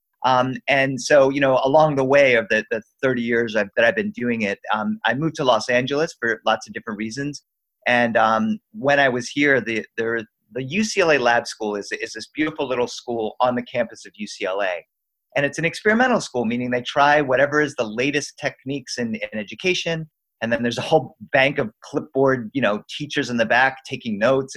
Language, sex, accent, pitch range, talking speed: English, male, American, 115-145 Hz, 210 wpm